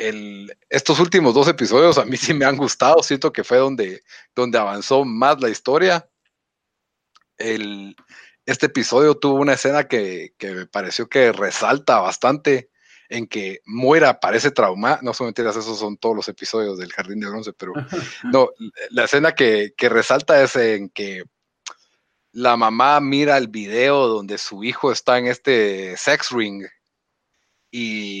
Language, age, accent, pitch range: Spanish, 40-59, Mexican, 105-135 Hz